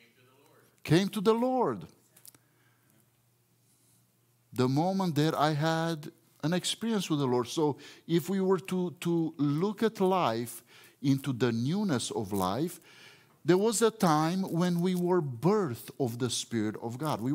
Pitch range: 120-180 Hz